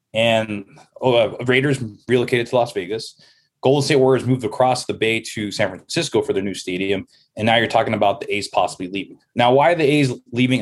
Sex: male